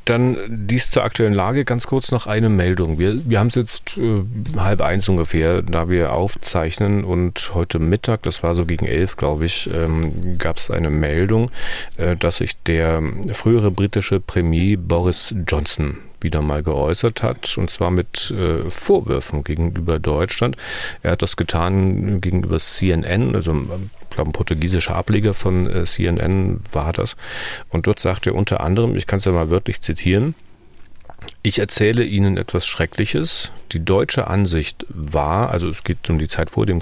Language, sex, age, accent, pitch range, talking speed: German, male, 40-59, German, 80-105 Hz, 170 wpm